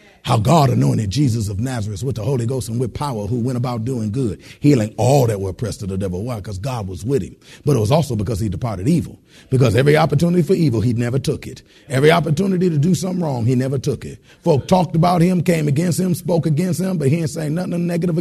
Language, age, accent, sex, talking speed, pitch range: English, 40-59, American, male, 245 wpm, 120-170 Hz